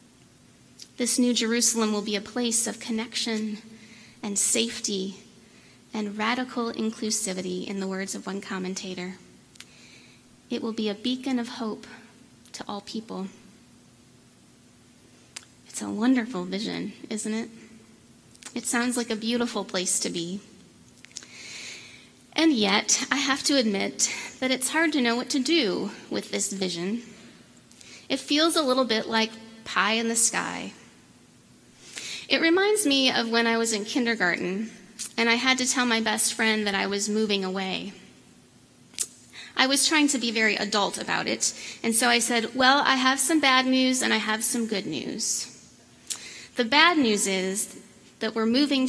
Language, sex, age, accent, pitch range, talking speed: English, female, 30-49, American, 205-250 Hz, 155 wpm